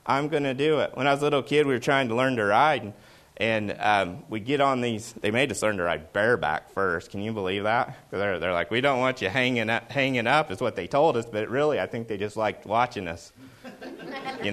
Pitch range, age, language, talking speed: 120-180 Hz, 30-49, English, 260 wpm